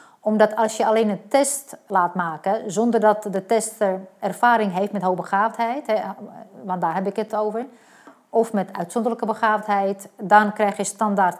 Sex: female